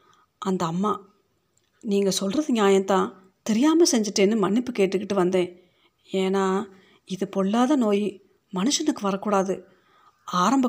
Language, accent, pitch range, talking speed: Tamil, native, 185-225 Hz, 95 wpm